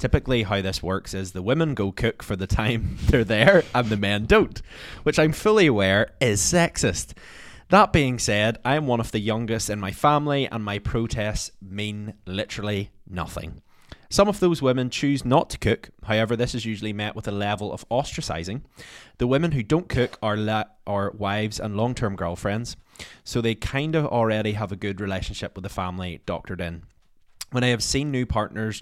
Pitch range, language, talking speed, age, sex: 95-120 Hz, English, 190 wpm, 20-39, male